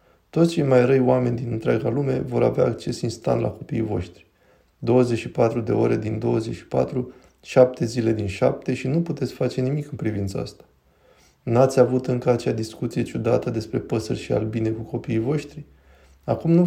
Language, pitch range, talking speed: Romanian, 105-125 Hz, 170 wpm